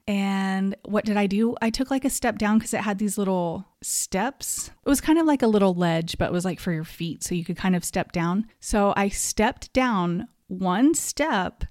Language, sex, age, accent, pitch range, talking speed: English, female, 30-49, American, 190-230 Hz, 230 wpm